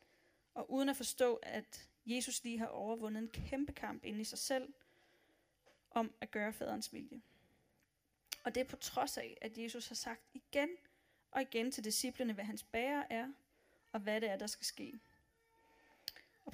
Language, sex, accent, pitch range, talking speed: Danish, female, native, 225-265 Hz, 175 wpm